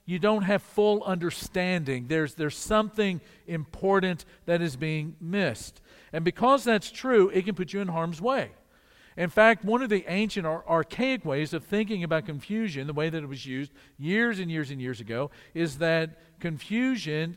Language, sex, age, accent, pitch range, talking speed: English, male, 50-69, American, 145-185 Hz, 180 wpm